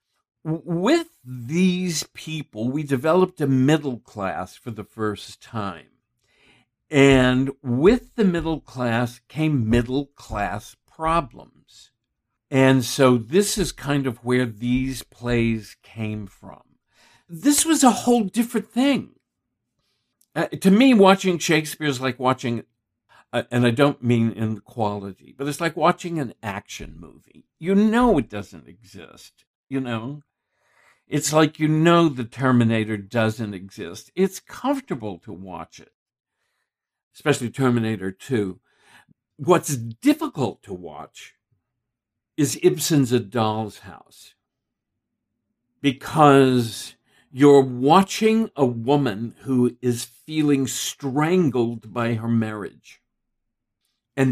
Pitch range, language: 115-155 Hz, English